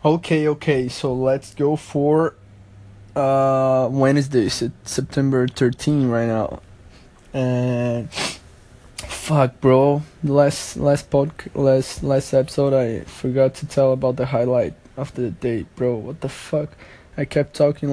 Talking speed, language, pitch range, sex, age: 140 wpm, English, 130-145 Hz, male, 20-39